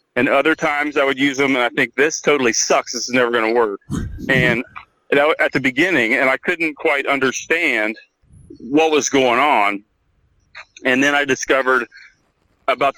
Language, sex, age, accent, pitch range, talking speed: English, male, 40-59, American, 115-145 Hz, 170 wpm